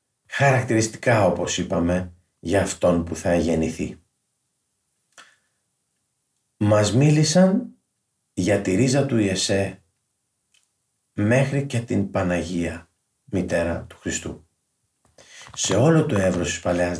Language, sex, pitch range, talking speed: Greek, male, 95-135 Hz, 100 wpm